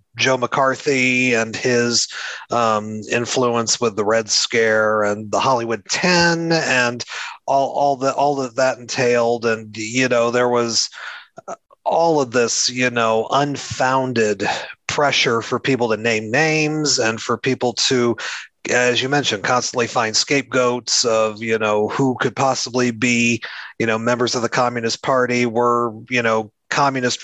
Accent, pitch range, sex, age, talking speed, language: American, 115-130 Hz, male, 30-49, 150 wpm, English